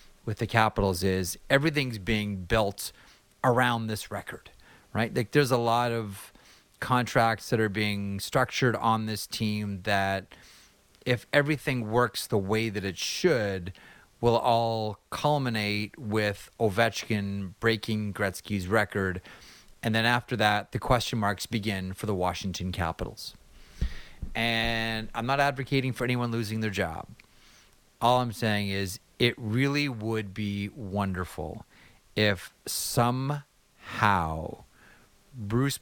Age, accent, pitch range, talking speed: 30-49, American, 95-120 Hz, 125 wpm